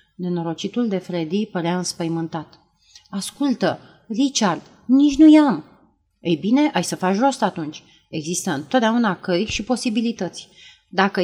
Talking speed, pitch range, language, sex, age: 125 wpm, 170-225 Hz, Romanian, female, 30-49